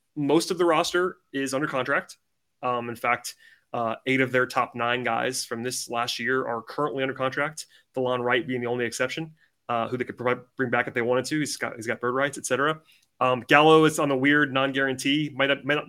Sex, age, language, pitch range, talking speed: male, 30-49, English, 120-145 Hz, 225 wpm